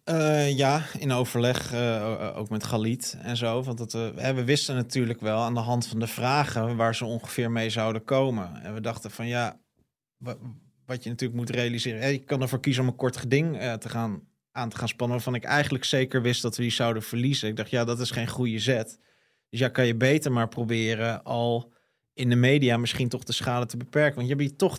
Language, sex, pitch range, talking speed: Dutch, male, 115-135 Hz, 230 wpm